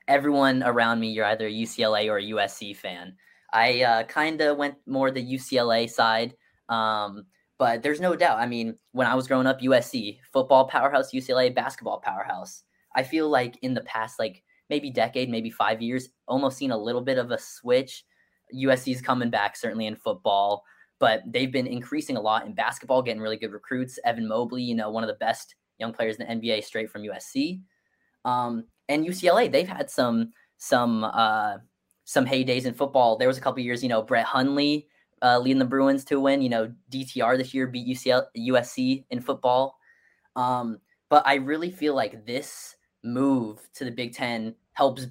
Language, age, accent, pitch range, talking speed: English, 10-29, American, 115-135 Hz, 190 wpm